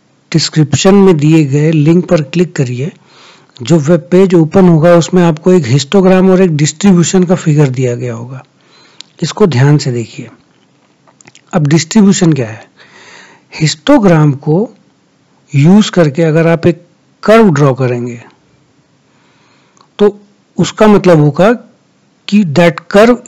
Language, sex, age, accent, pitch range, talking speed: Hindi, male, 60-79, native, 150-190 Hz, 130 wpm